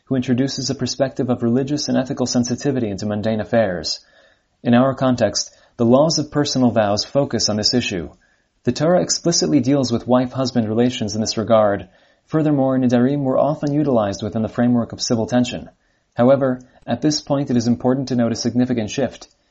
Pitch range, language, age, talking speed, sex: 110-130 Hz, English, 30-49, 175 wpm, male